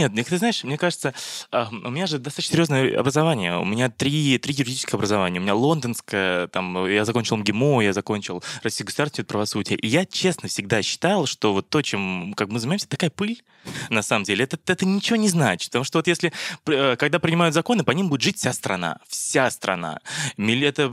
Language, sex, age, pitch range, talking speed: Russian, male, 20-39, 115-170 Hz, 190 wpm